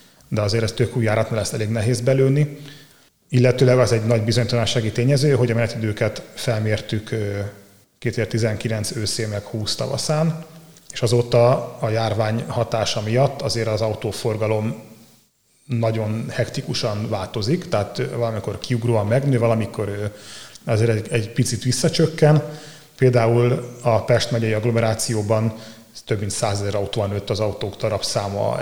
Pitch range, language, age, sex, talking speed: 110-125 Hz, Hungarian, 30-49, male, 125 wpm